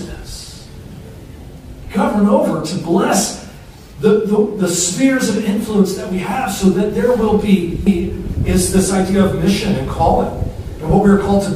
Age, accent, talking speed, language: 40-59, American, 165 wpm, English